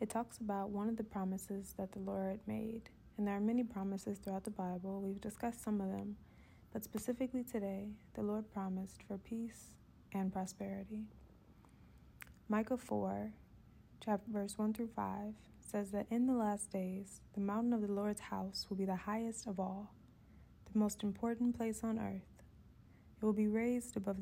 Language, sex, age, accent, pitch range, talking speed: English, female, 20-39, American, 195-220 Hz, 175 wpm